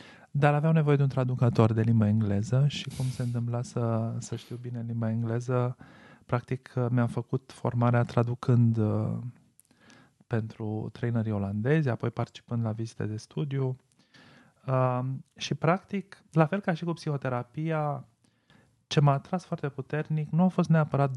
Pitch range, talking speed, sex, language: 115-140 Hz, 145 wpm, male, Romanian